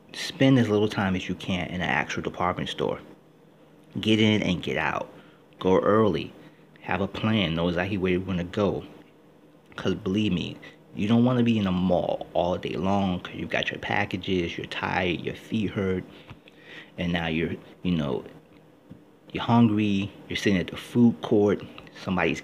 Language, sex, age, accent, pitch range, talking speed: English, male, 30-49, American, 95-120 Hz, 180 wpm